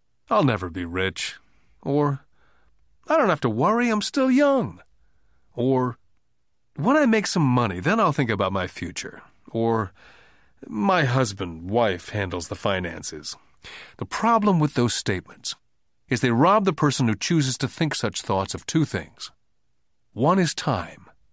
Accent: American